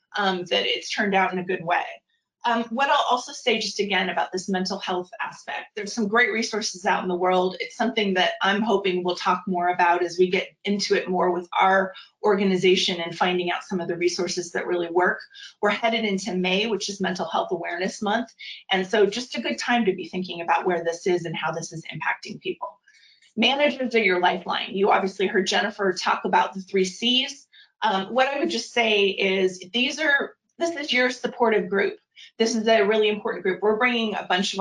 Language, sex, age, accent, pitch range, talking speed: English, female, 30-49, American, 185-225 Hz, 215 wpm